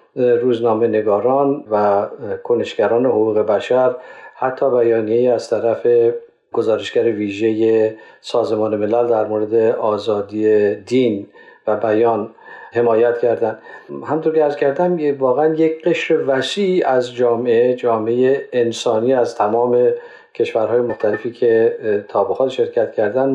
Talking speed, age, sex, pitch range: 110 wpm, 50-69, male, 115-165 Hz